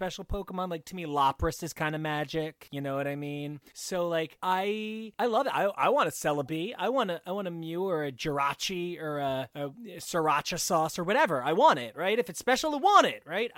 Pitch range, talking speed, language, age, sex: 135-185 Hz, 245 wpm, English, 30-49, male